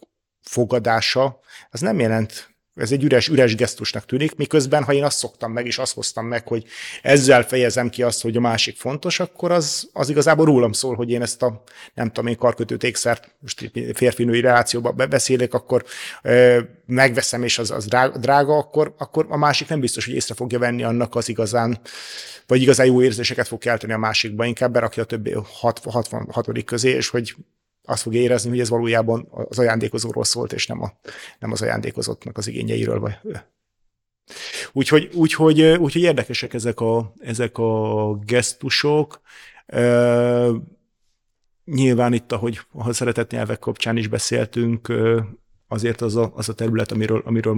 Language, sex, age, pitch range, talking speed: Hungarian, male, 30-49, 110-125 Hz, 165 wpm